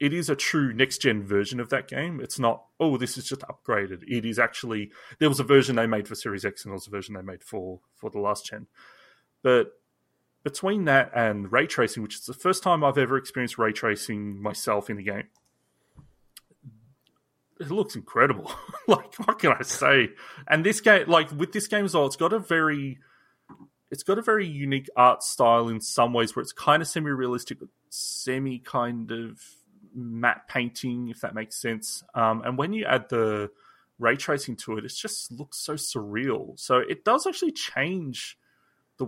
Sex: male